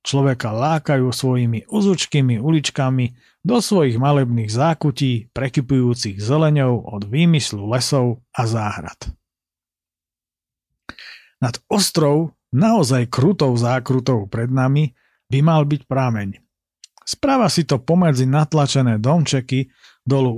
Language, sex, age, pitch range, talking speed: Slovak, male, 50-69, 120-155 Hz, 100 wpm